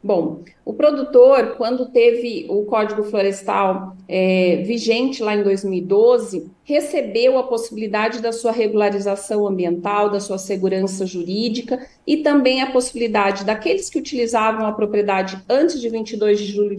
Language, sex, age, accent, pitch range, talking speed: Portuguese, female, 40-59, Brazilian, 215-280 Hz, 130 wpm